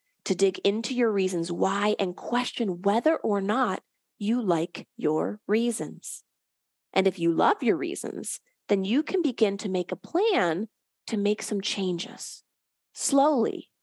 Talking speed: 150 wpm